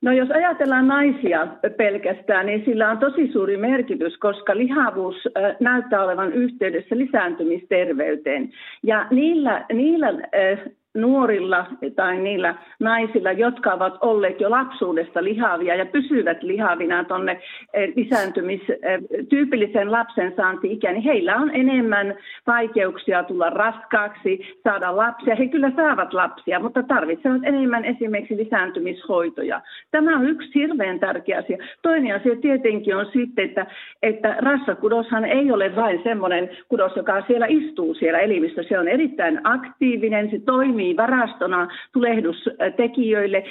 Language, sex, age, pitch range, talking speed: Finnish, female, 50-69, 195-260 Hz, 120 wpm